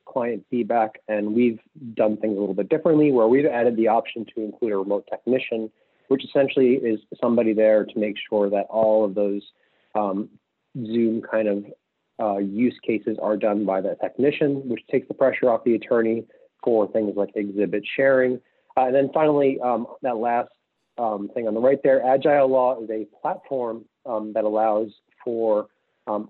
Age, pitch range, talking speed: 30-49, 105-125 Hz, 180 wpm